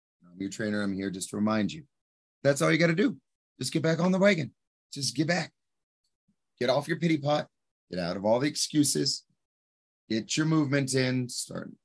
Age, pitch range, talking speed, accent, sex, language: 30-49, 95-135 Hz, 205 wpm, American, male, English